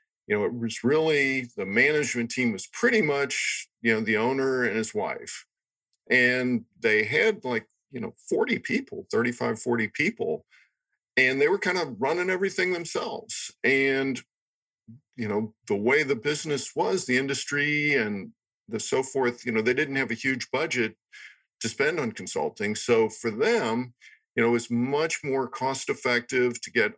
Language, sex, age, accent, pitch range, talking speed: English, male, 50-69, American, 115-145 Hz, 170 wpm